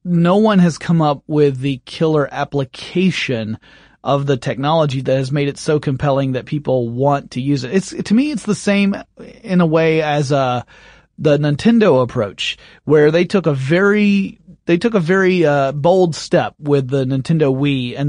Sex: male